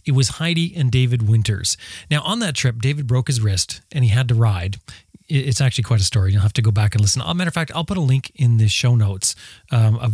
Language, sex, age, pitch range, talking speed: English, male, 30-49, 110-135 Hz, 265 wpm